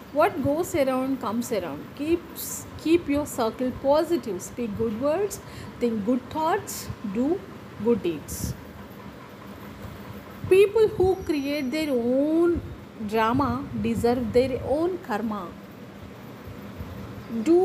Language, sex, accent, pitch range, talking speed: Telugu, female, native, 215-305 Hz, 100 wpm